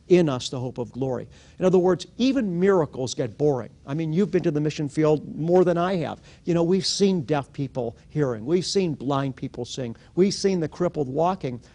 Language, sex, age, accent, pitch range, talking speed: English, male, 50-69, American, 140-180 Hz, 215 wpm